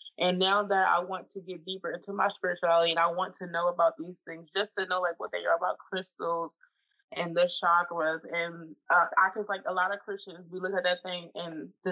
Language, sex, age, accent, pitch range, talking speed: English, female, 20-39, American, 175-200 Hz, 235 wpm